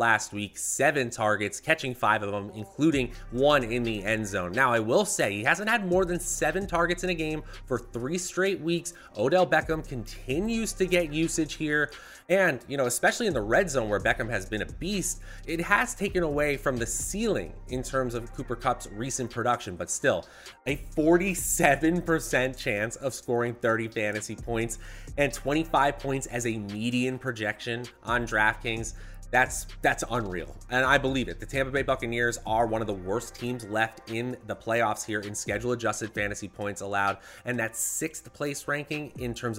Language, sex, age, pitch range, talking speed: English, male, 20-39, 110-150 Hz, 180 wpm